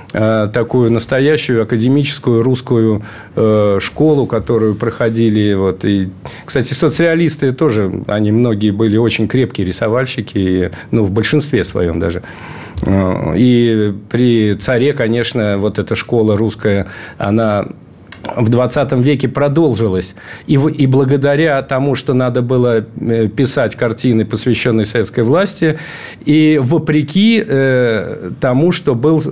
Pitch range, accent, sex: 110-140 Hz, native, male